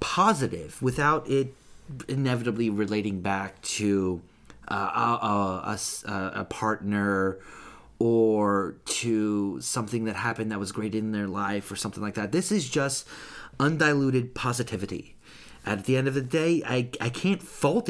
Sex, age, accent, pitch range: male, 30-49, American, 100-140 Hz